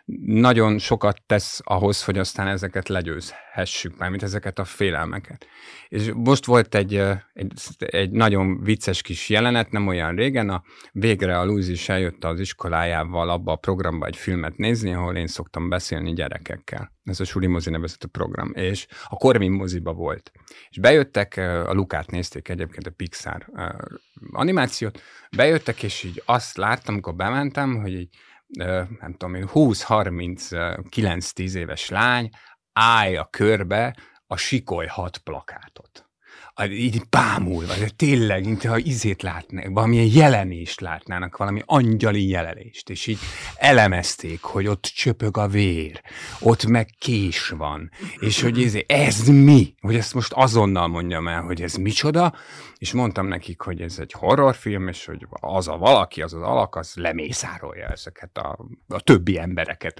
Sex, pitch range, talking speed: male, 90-110 Hz, 145 wpm